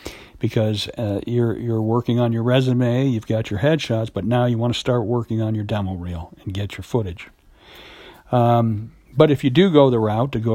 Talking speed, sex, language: 210 wpm, male, English